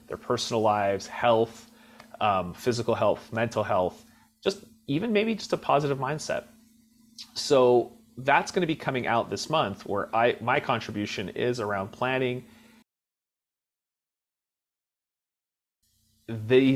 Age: 30-49